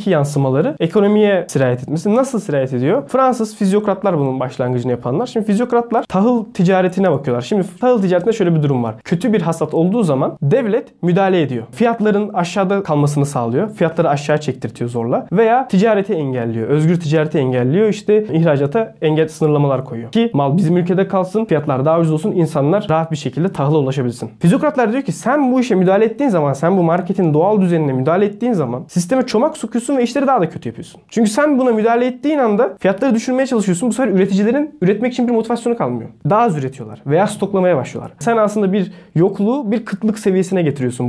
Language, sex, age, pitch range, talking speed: Turkish, male, 20-39, 145-215 Hz, 180 wpm